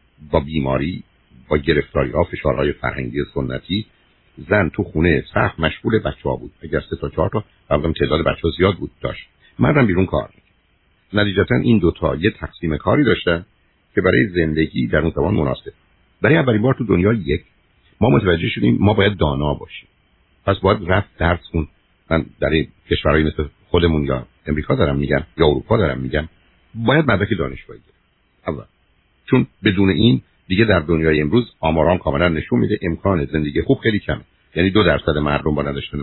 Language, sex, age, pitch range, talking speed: Persian, male, 60-79, 75-100 Hz, 165 wpm